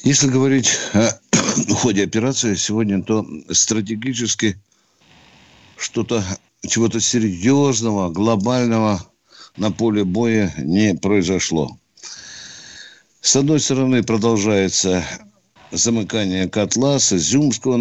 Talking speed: 80 wpm